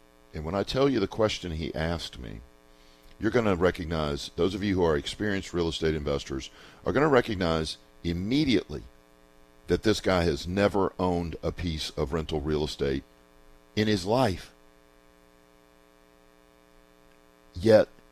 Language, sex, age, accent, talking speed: English, male, 50-69, American, 145 wpm